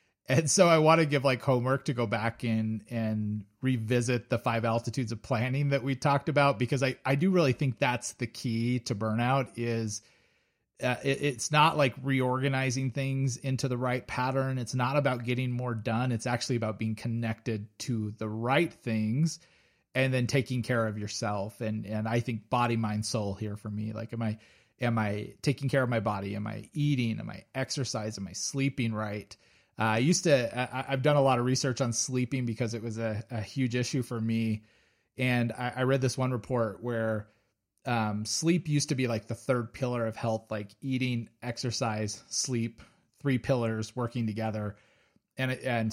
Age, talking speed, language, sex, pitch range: 30-49, 190 wpm, English, male, 110-130 Hz